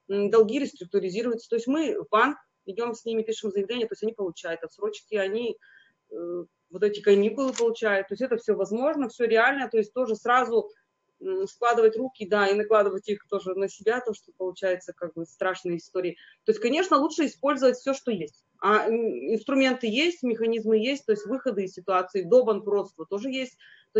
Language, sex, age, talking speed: Russian, female, 30-49, 180 wpm